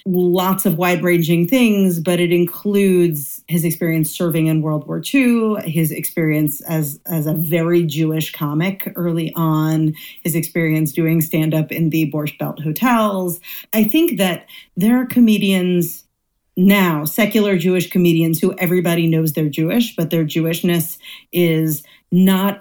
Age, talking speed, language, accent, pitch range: 40-59, 145 wpm, English, American, 160-190 Hz